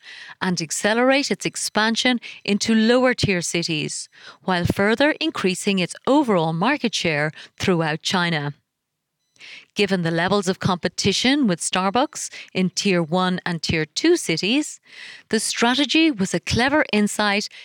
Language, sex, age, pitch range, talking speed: English, female, 30-49, 175-235 Hz, 120 wpm